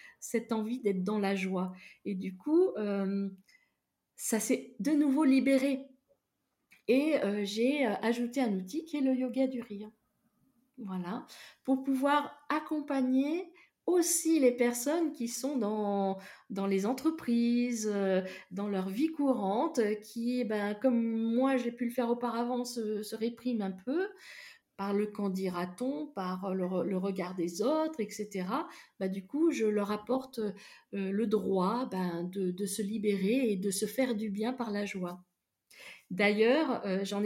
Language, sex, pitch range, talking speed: French, female, 200-265 Hz, 155 wpm